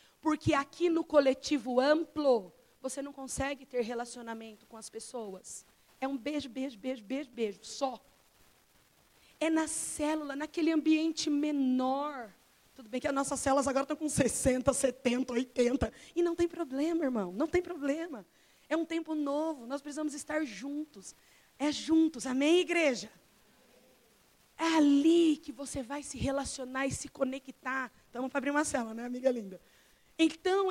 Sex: female